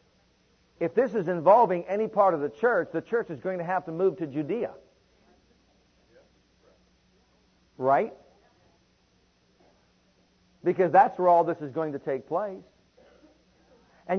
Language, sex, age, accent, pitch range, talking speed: English, male, 50-69, American, 155-205 Hz, 130 wpm